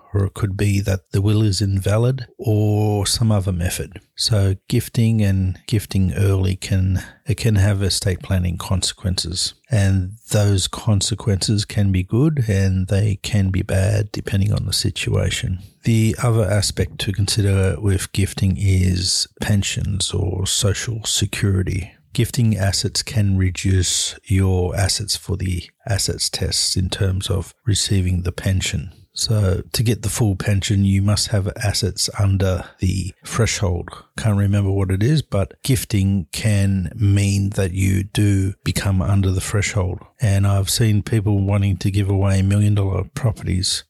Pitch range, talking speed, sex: 95-105 Hz, 150 wpm, male